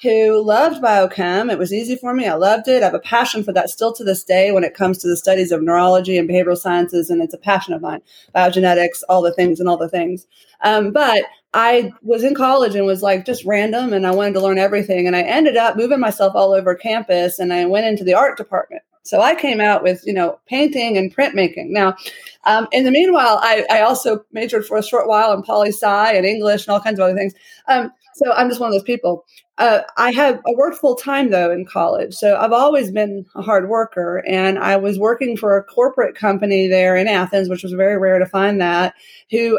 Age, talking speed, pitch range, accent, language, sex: 30-49, 240 wpm, 190-235 Hz, American, English, female